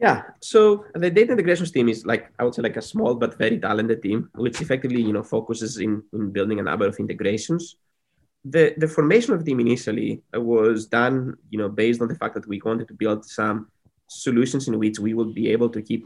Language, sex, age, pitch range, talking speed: English, male, 20-39, 110-130 Hz, 225 wpm